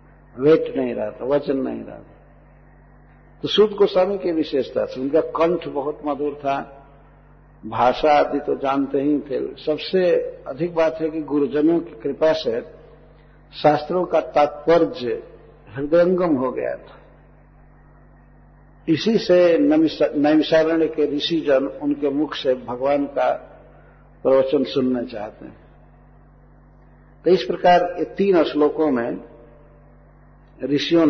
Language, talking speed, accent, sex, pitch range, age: Hindi, 120 wpm, native, male, 135-160 Hz, 60-79